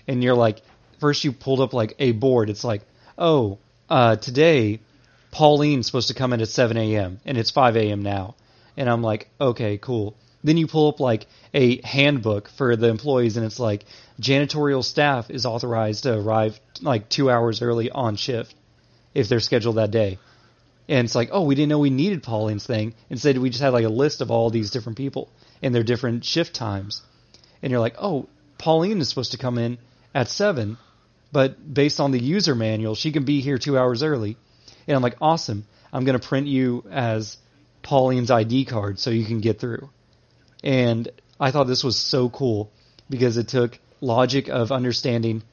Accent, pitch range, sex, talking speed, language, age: American, 115-135 Hz, male, 195 wpm, English, 30-49